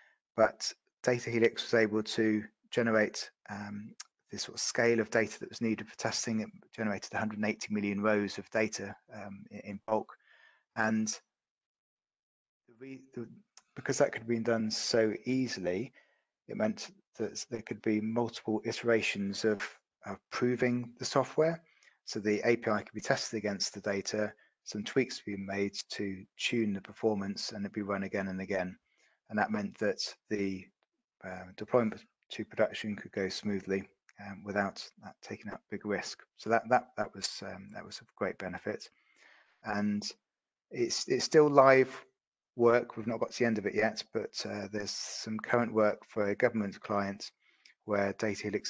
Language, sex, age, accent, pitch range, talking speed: English, male, 30-49, British, 100-120 Hz, 165 wpm